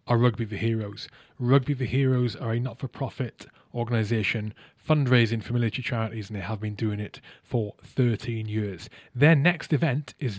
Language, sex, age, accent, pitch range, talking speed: English, male, 20-39, British, 110-135 Hz, 160 wpm